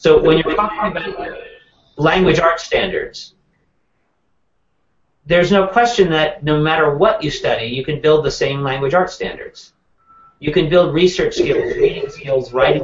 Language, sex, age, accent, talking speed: English, male, 40-59, American, 155 wpm